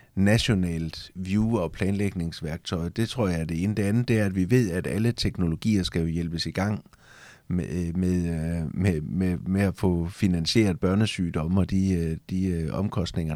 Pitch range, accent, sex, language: 85-100 Hz, native, male, Danish